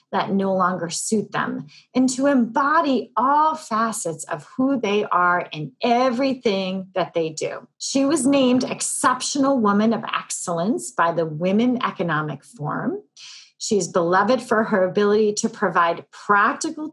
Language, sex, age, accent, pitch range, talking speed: English, female, 30-49, American, 180-260 Hz, 140 wpm